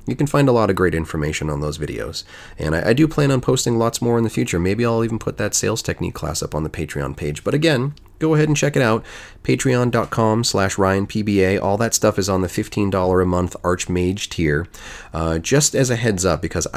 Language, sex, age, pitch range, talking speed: English, male, 30-49, 80-110 Hz, 235 wpm